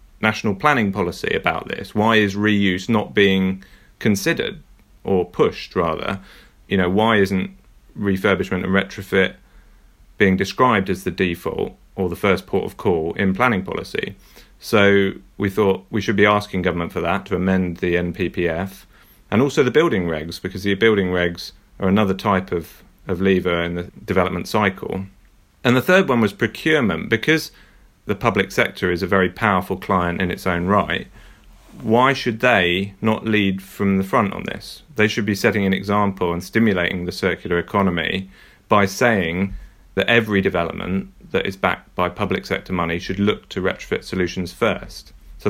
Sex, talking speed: male, 170 wpm